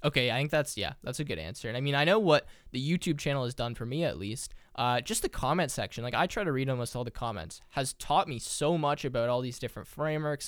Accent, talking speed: American, 275 wpm